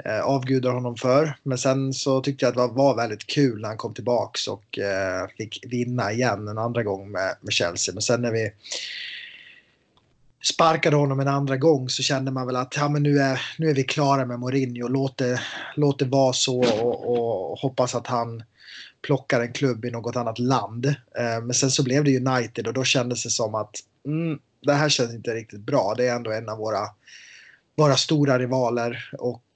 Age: 20-39